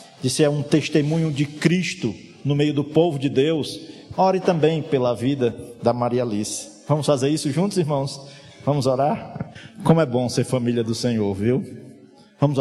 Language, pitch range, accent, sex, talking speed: Portuguese, 115-140 Hz, Brazilian, male, 165 wpm